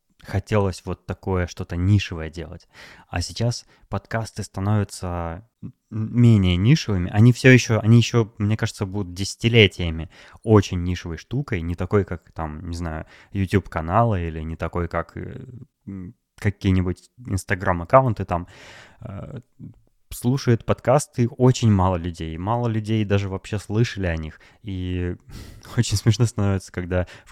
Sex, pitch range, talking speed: male, 90-110 Hz, 130 wpm